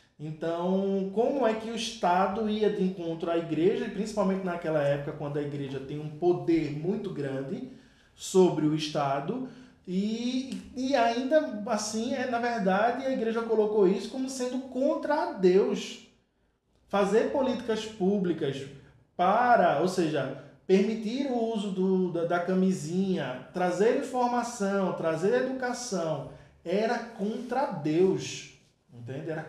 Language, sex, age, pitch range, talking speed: Portuguese, male, 20-39, 170-240 Hz, 125 wpm